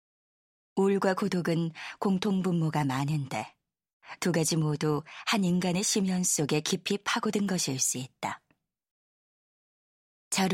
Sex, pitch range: female, 150-195 Hz